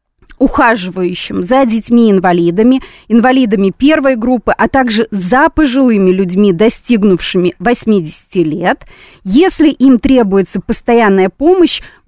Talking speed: 100 wpm